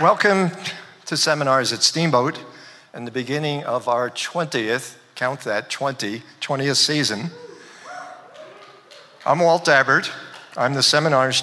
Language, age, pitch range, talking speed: English, 50-69, 120-145 Hz, 115 wpm